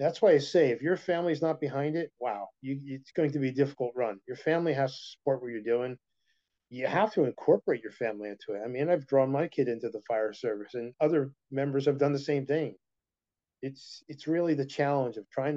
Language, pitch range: English, 125-155 Hz